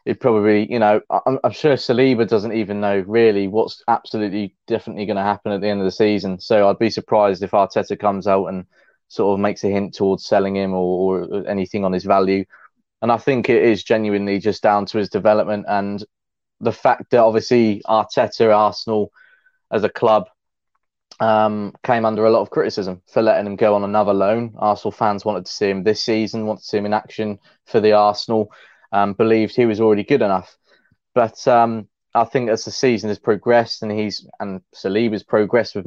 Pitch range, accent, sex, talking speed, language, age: 100-115 Hz, British, male, 200 wpm, English, 20-39